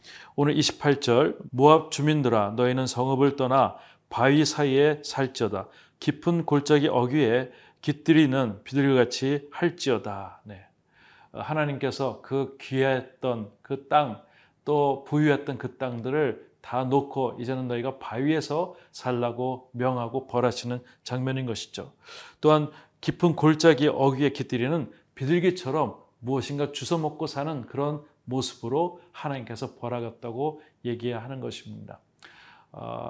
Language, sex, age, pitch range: Korean, male, 30-49, 120-145 Hz